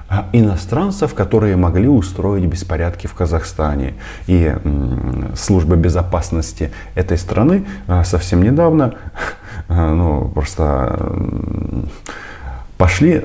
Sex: male